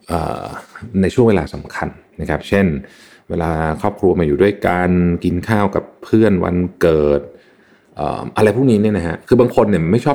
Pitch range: 75-100 Hz